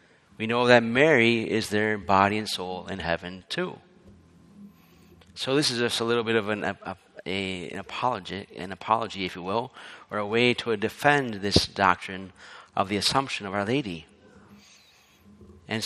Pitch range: 100-125 Hz